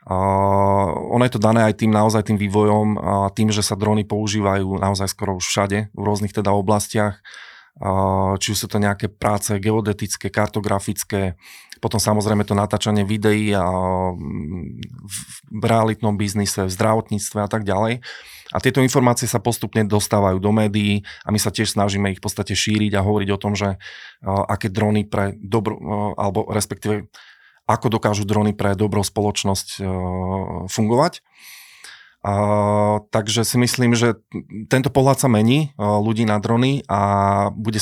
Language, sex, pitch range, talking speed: Slovak, male, 100-110 Hz, 155 wpm